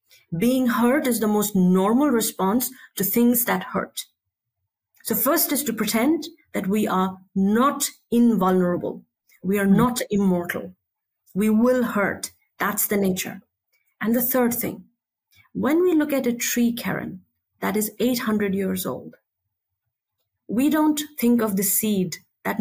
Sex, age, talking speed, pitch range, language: female, 30-49, 145 wpm, 190-250 Hz, English